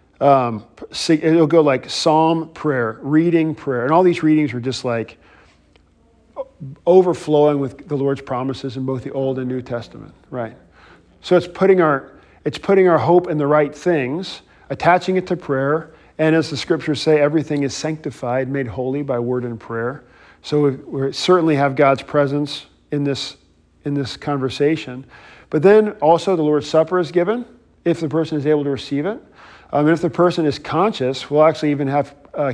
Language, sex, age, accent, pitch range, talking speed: English, male, 40-59, American, 125-155 Hz, 180 wpm